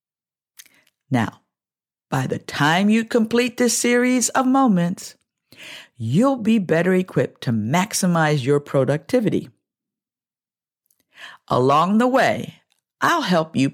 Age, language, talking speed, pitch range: 50-69, English, 105 wpm, 145-220 Hz